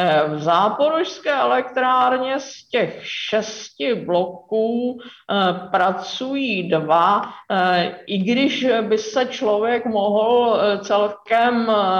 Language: Czech